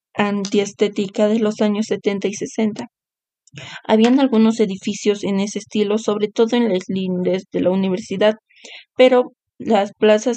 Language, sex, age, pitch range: Spanish, female, 20-39, 205-225 Hz